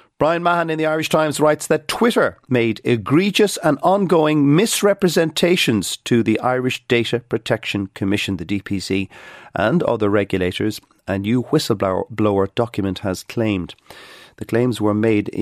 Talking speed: 135 wpm